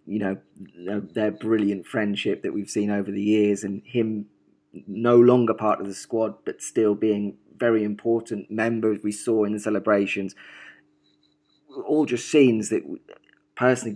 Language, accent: English, British